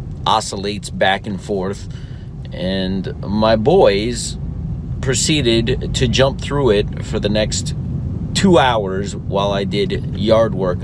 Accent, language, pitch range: American, English, 95-125 Hz